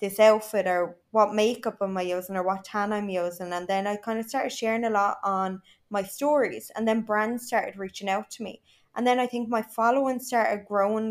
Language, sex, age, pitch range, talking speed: English, female, 20-39, 195-230 Hz, 220 wpm